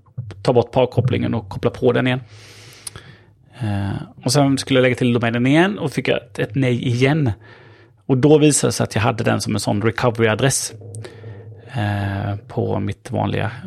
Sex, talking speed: male, 165 wpm